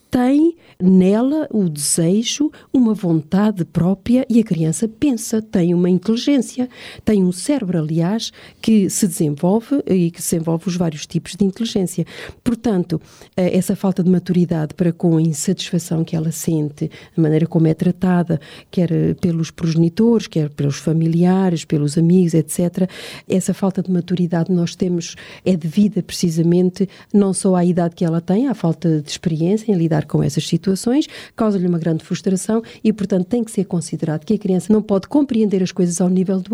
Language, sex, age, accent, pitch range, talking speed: Portuguese, female, 40-59, Brazilian, 170-220 Hz, 165 wpm